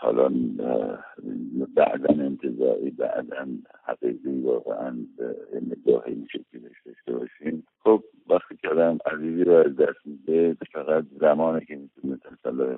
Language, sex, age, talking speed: Persian, male, 60-79, 110 wpm